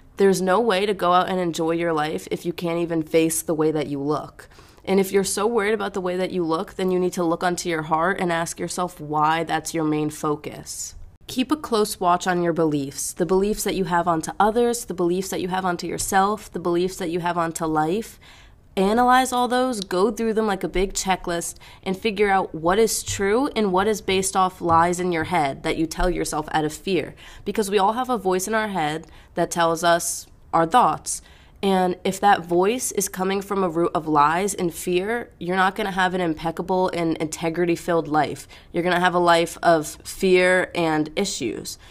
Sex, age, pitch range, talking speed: female, 20-39, 165-195 Hz, 220 wpm